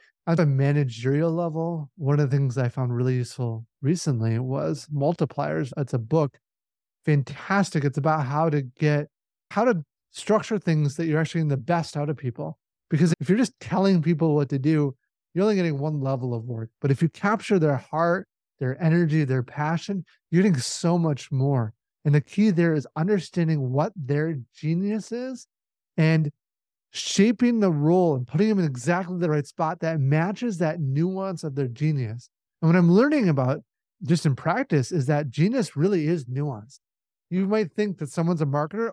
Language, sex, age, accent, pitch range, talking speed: English, male, 30-49, American, 140-180 Hz, 180 wpm